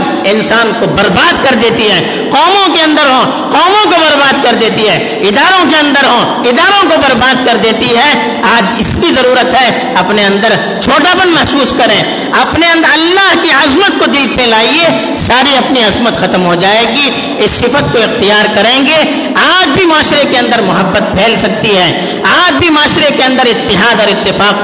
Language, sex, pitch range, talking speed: Urdu, female, 190-280 Hz, 175 wpm